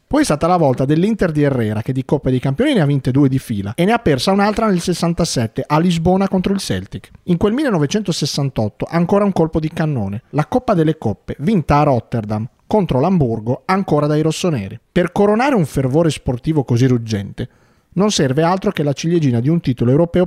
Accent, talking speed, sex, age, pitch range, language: native, 200 wpm, male, 40-59, 125-180 Hz, Italian